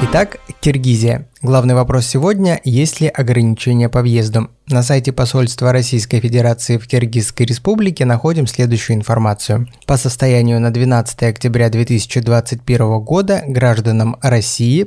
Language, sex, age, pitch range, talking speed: Russian, male, 20-39, 120-140 Hz, 120 wpm